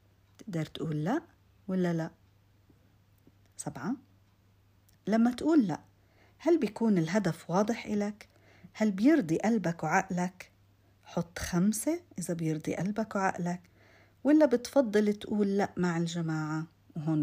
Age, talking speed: 50-69, 110 wpm